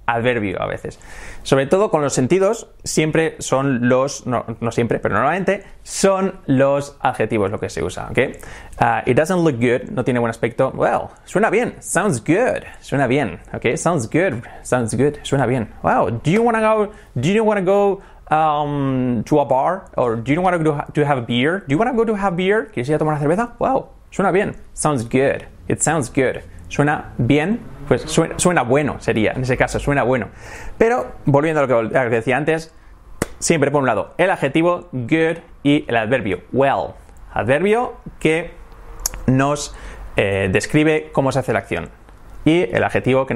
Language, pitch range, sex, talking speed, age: English, 120-160 Hz, male, 190 wpm, 30-49